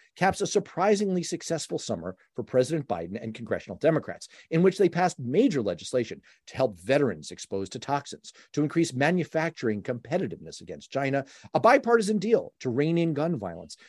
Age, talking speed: 40-59, 160 wpm